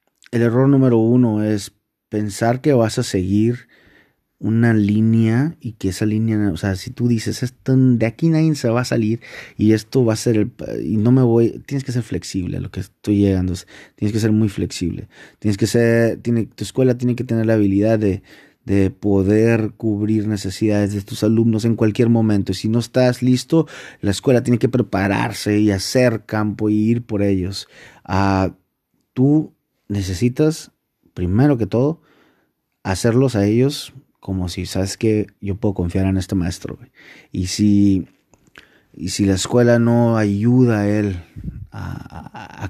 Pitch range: 100-120 Hz